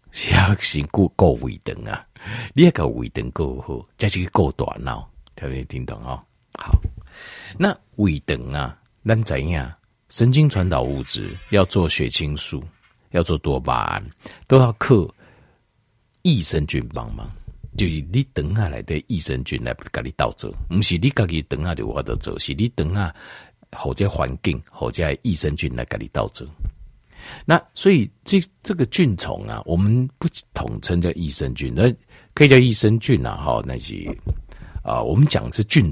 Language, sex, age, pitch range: Chinese, male, 50-69, 75-115 Hz